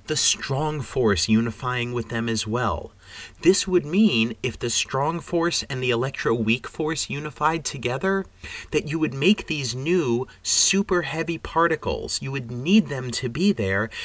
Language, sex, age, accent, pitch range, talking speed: English, male, 30-49, American, 105-140 Hz, 160 wpm